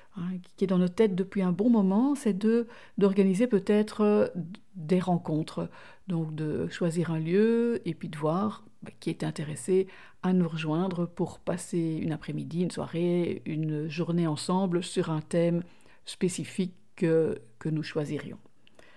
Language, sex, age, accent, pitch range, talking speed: French, female, 50-69, French, 170-205 Hz, 150 wpm